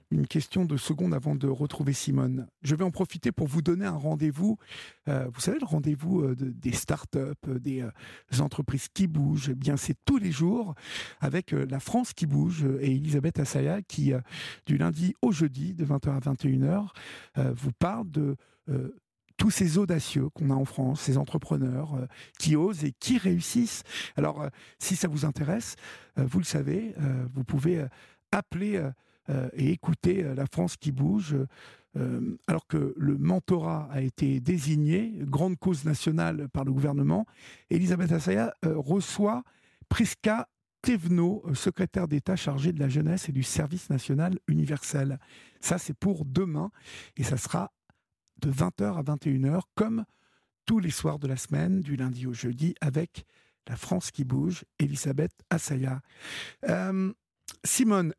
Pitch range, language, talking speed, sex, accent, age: 140-180 Hz, French, 155 wpm, male, French, 50-69